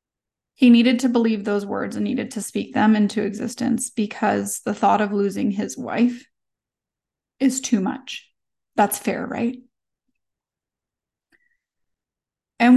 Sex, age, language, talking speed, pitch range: female, 20-39, English, 125 wpm, 205-255 Hz